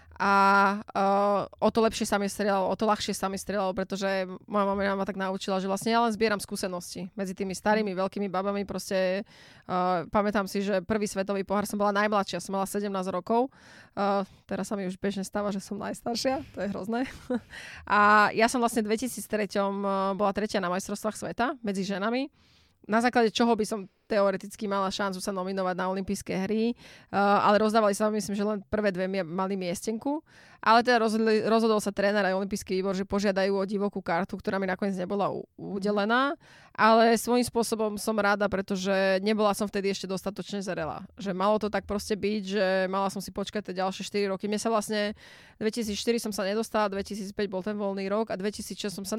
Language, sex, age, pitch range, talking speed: Slovak, female, 20-39, 195-215 Hz, 190 wpm